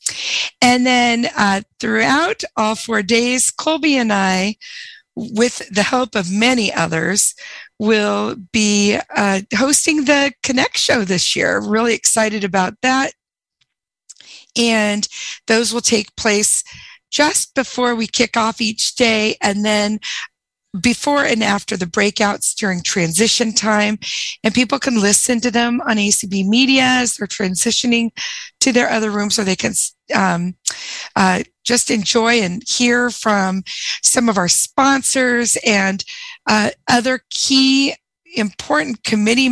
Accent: American